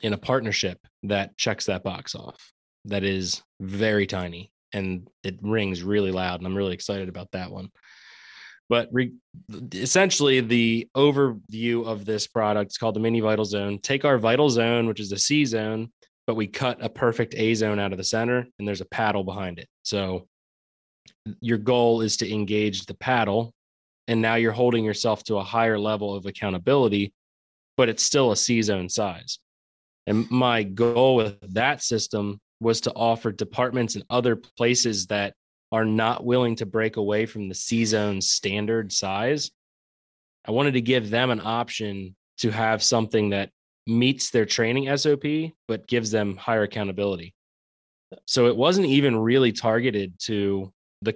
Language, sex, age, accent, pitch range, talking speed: English, male, 20-39, American, 100-115 Hz, 170 wpm